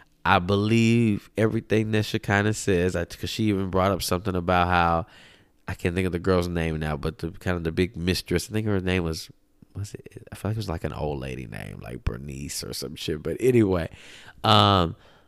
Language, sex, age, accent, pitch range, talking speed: English, male, 20-39, American, 85-105 Hz, 210 wpm